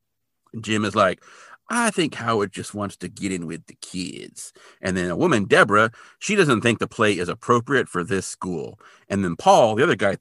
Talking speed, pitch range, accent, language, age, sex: 210 wpm, 100-125 Hz, American, English, 40-59, male